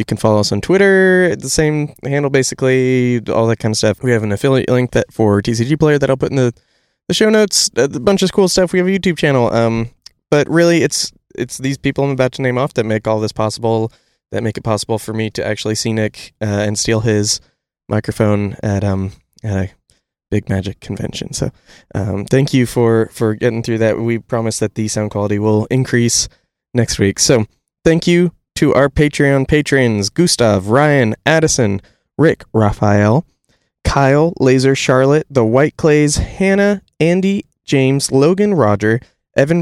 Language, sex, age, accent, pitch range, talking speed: English, male, 20-39, American, 110-150 Hz, 190 wpm